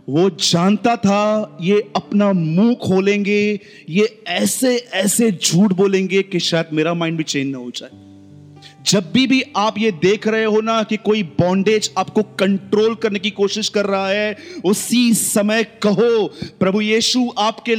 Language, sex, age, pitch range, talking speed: Hindi, male, 30-49, 180-215 Hz, 160 wpm